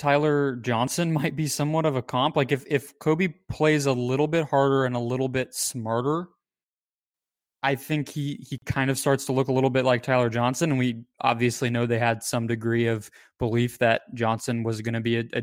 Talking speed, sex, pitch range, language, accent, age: 215 wpm, male, 115-135 Hz, English, American, 20-39